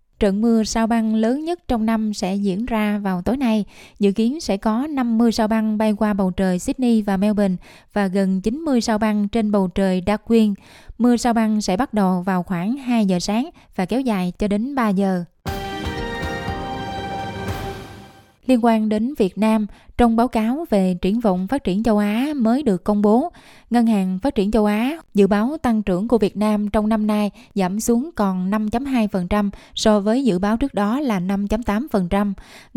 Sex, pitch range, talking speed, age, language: female, 195-230 Hz, 185 wpm, 20-39, Vietnamese